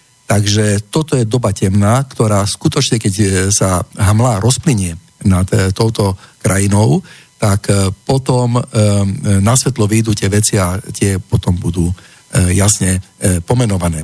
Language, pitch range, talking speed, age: Slovak, 105-130 Hz, 115 wpm, 50-69